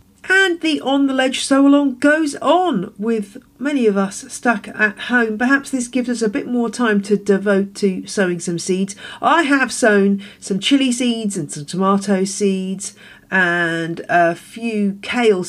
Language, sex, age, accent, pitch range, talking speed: English, female, 40-59, British, 195-255 Hz, 170 wpm